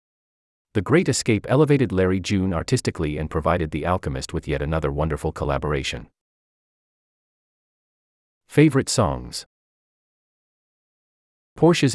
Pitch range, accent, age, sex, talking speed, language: 75-125 Hz, American, 30-49, male, 95 wpm, English